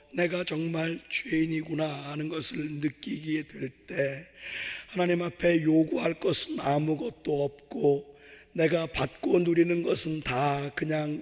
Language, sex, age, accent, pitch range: Korean, male, 40-59, native, 140-165 Hz